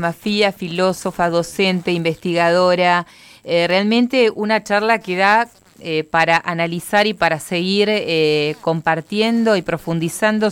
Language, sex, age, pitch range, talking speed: Spanish, female, 20-39, 170-200 Hz, 115 wpm